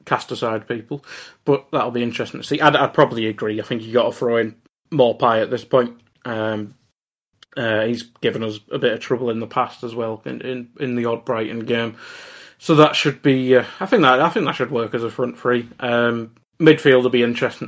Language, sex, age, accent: English, male, 30-49, British